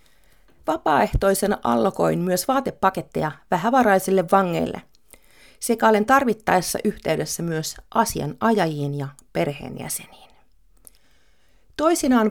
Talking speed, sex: 75 wpm, female